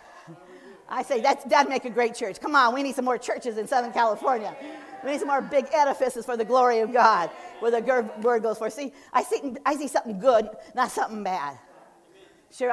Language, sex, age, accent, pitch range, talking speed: English, female, 50-69, American, 210-275 Hz, 205 wpm